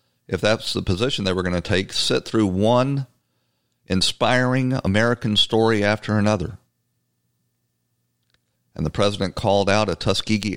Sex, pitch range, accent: male, 80-115 Hz, American